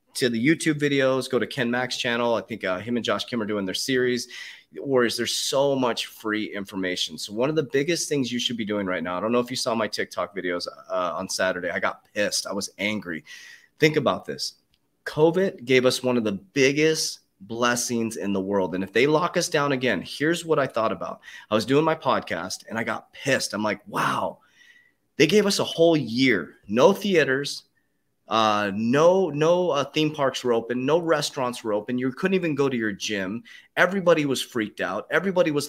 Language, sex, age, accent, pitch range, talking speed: English, male, 30-49, American, 110-155 Hz, 215 wpm